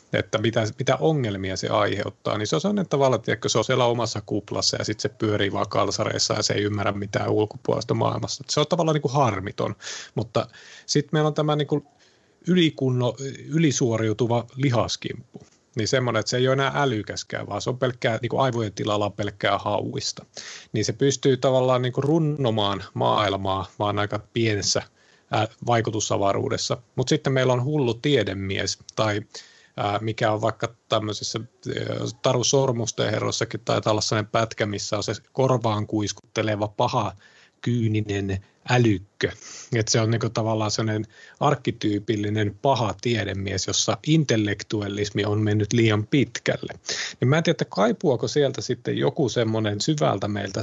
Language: Finnish